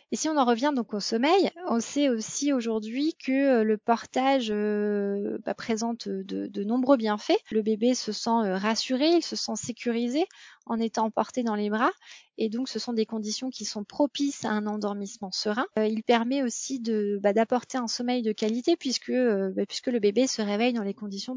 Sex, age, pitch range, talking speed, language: female, 20-39, 215-260 Hz, 200 wpm, French